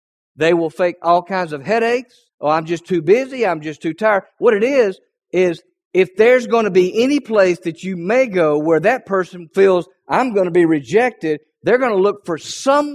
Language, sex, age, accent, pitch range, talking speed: English, male, 50-69, American, 135-185 Hz, 215 wpm